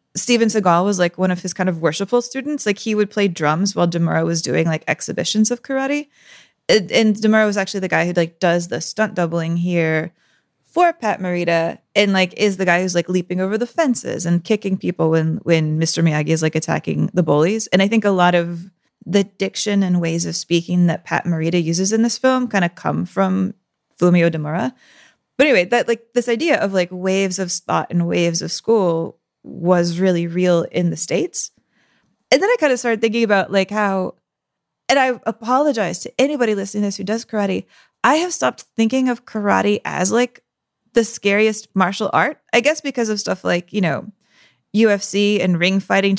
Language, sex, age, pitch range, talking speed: English, female, 20-39, 170-215 Hz, 200 wpm